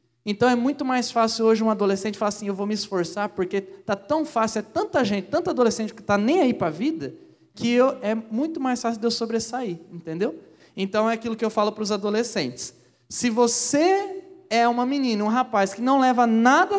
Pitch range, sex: 220-285 Hz, male